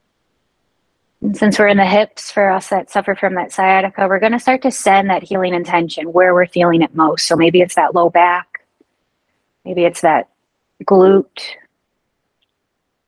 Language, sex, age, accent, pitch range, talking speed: English, female, 30-49, American, 180-200 Hz, 160 wpm